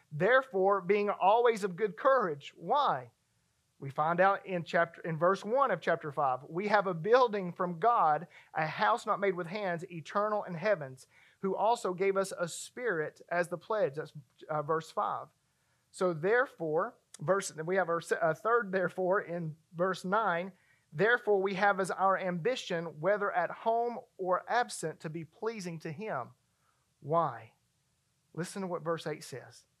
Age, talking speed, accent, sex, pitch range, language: 40-59, 160 wpm, American, male, 150-195 Hz, English